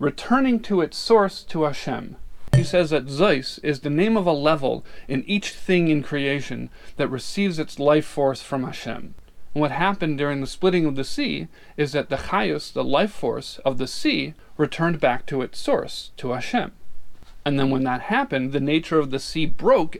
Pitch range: 135-170 Hz